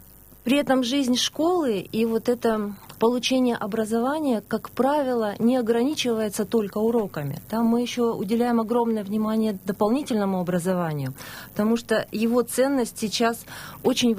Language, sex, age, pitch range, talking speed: Russian, female, 30-49, 200-235 Hz, 125 wpm